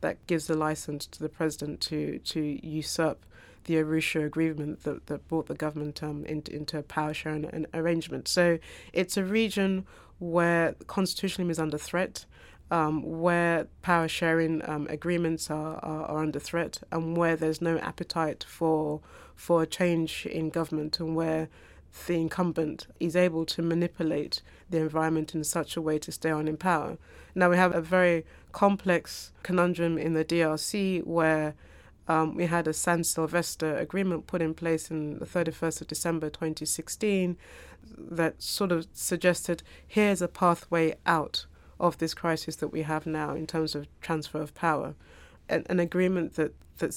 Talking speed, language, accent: 165 wpm, English, British